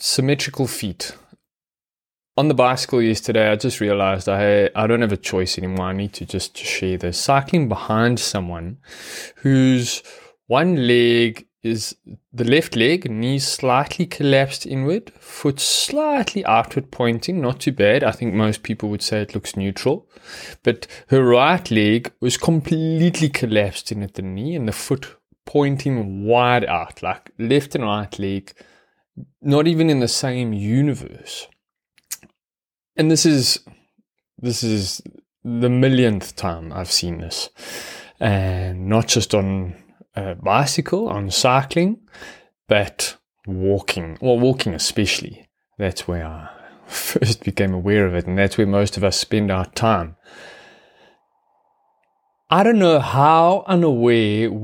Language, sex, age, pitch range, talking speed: English, male, 20-39, 100-140 Hz, 140 wpm